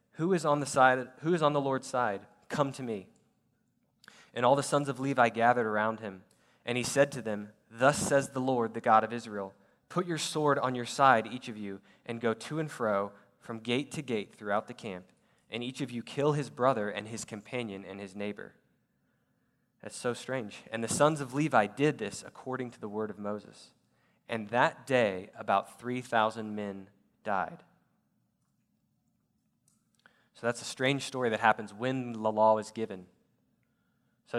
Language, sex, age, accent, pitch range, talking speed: English, male, 20-39, American, 110-135 Hz, 185 wpm